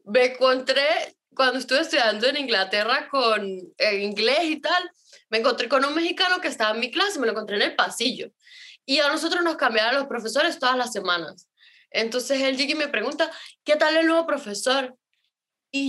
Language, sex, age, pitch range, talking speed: Spanish, female, 10-29, 230-325 Hz, 190 wpm